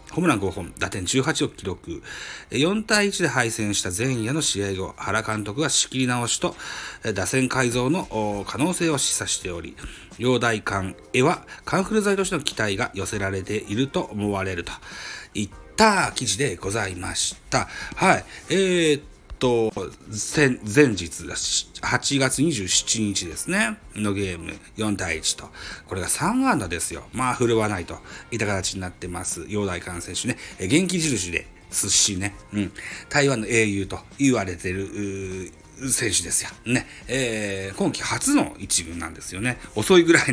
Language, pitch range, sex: Japanese, 95-135 Hz, male